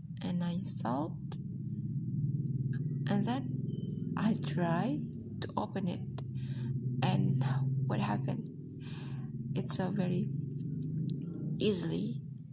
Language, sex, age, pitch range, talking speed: Indonesian, female, 20-39, 140-195 Hz, 80 wpm